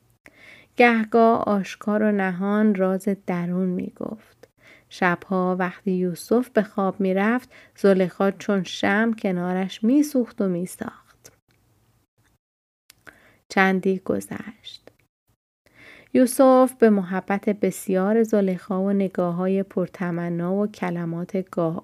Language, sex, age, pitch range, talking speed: Persian, female, 30-49, 185-225 Hz, 100 wpm